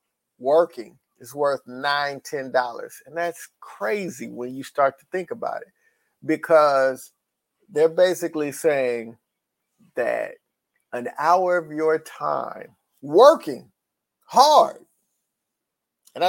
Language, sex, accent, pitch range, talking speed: English, male, American, 130-170 Hz, 105 wpm